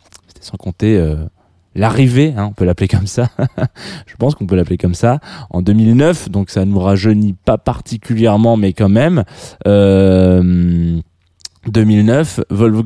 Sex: male